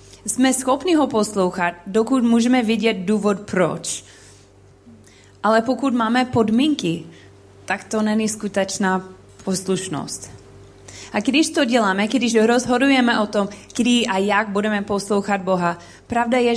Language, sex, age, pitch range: Czech, female, 20-39, 155-230 Hz